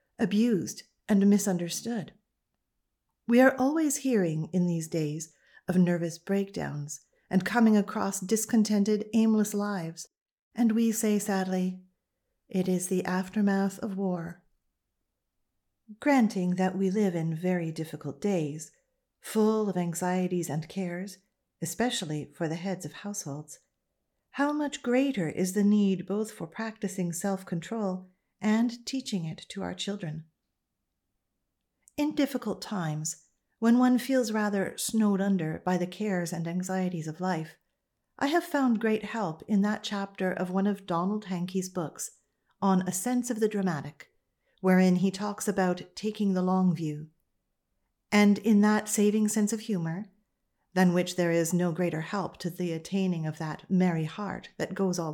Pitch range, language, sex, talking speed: 175-215 Hz, English, female, 145 wpm